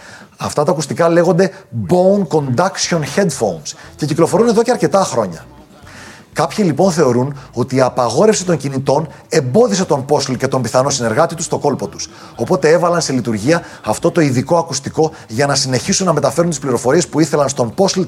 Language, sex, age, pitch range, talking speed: Greek, male, 30-49, 125-180 Hz, 170 wpm